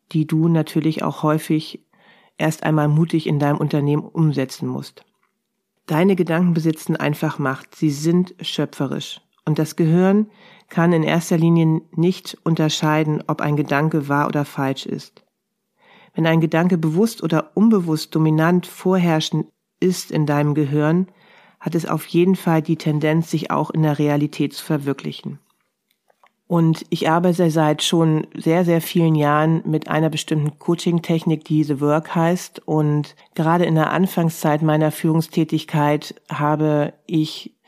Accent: German